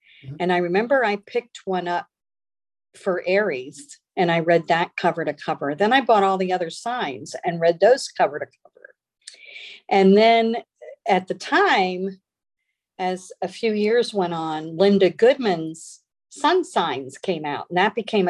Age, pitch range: 50-69, 175-220 Hz